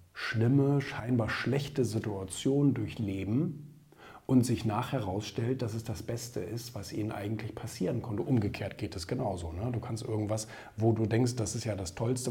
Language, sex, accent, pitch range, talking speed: German, male, German, 105-130 Hz, 165 wpm